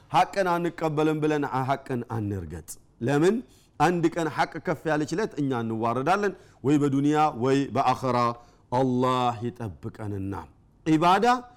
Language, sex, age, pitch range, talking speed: Amharic, male, 50-69, 140-200 Hz, 110 wpm